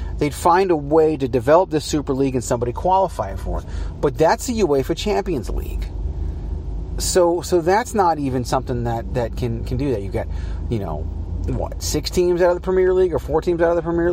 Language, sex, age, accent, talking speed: English, male, 40-59, American, 215 wpm